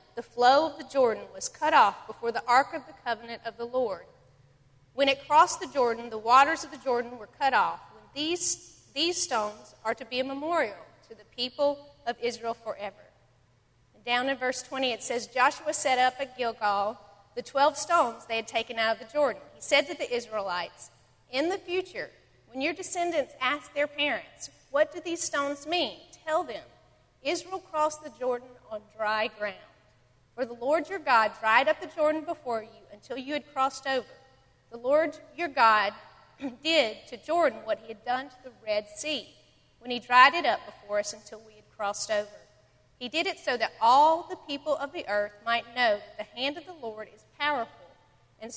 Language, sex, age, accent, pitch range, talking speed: English, female, 40-59, American, 220-300 Hz, 195 wpm